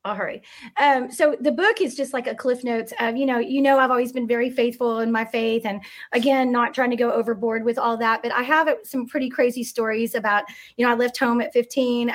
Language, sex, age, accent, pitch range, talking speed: English, female, 30-49, American, 225-265 Hz, 240 wpm